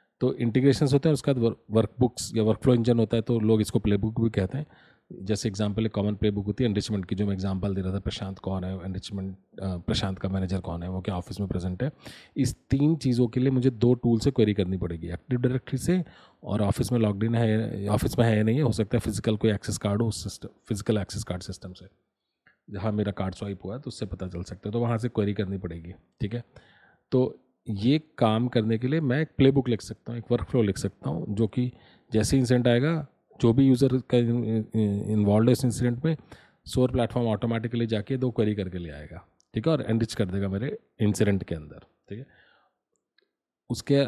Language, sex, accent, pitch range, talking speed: Hindi, male, native, 100-125 Hz, 225 wpm